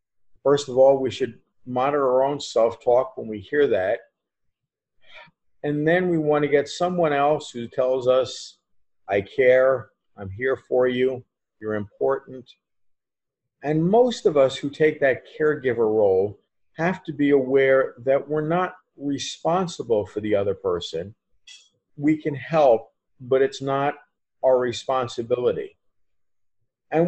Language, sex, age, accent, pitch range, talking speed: English, male, 50-69, American, 130-165 Hz, 135 wpm